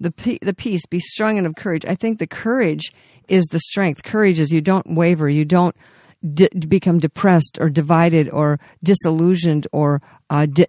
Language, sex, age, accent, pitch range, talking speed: English, female, 50-69, American, 150-180 Hz, 175 wpm